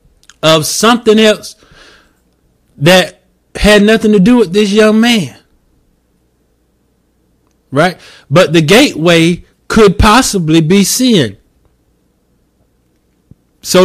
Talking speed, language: 90 wpm, English